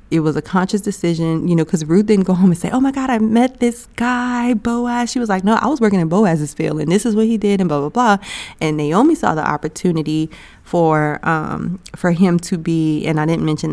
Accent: American